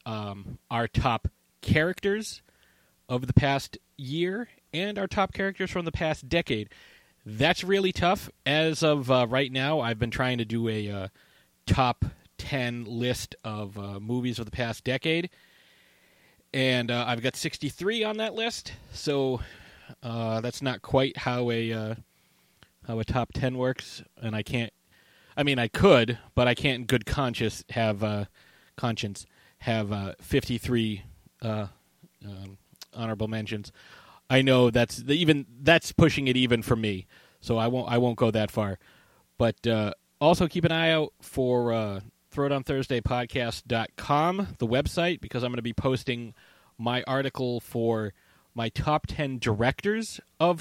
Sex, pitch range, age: male, 110-140 Hz, 30-49